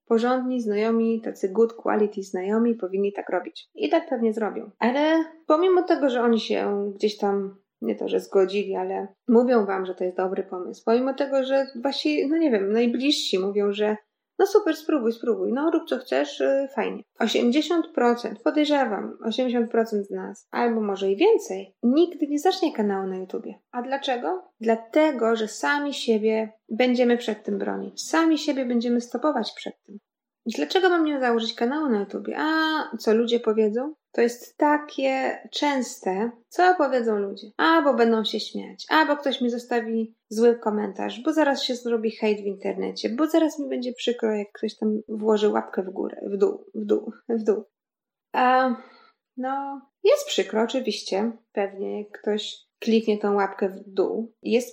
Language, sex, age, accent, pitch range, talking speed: Polish, female, 20-39, native, 215-280 Hz, 165 wpm